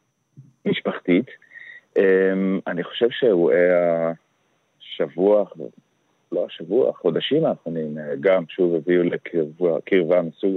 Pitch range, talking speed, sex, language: 80-95 Hz, 85 wpm, male, Hebrew